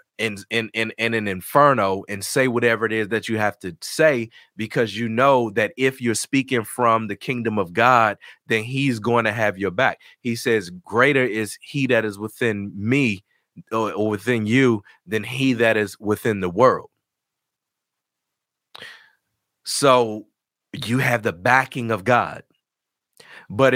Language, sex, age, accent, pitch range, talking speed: English, male, 30-49, American, 105-125 Hz, 155 wpm